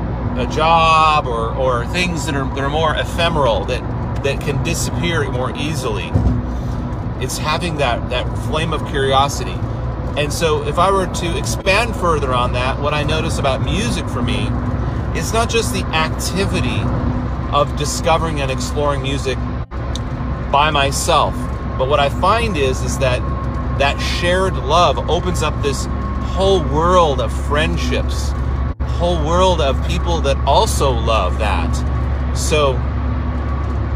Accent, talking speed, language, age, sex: American, 140 wpm, English, 40-59, male